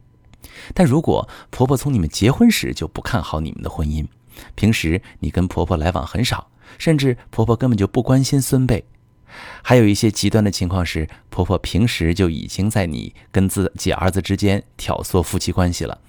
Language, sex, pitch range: Chinese, male, 90-120 Hz